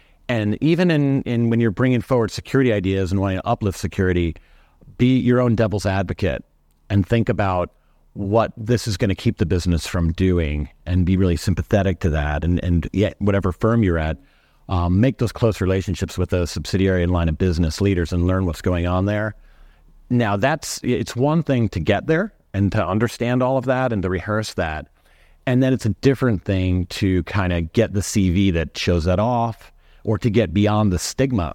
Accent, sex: American, male